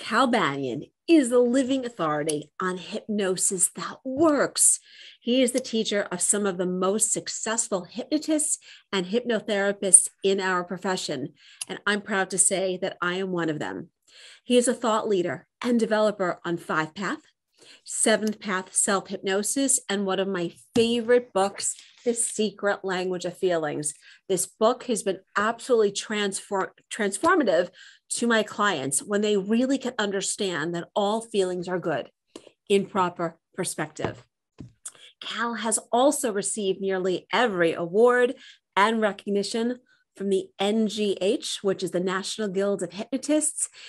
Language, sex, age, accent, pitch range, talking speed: English, female, 40-59, American, 185-225 Hz, 140 wpm